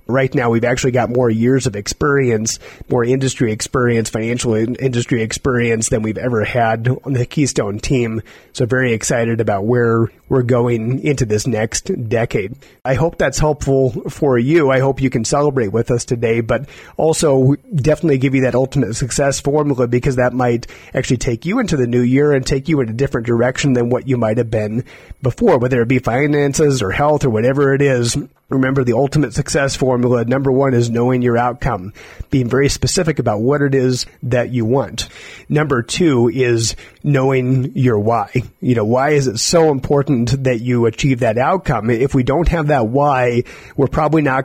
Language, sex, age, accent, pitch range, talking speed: English, male, 30-49, American, 120-140 Hz, 190 wpm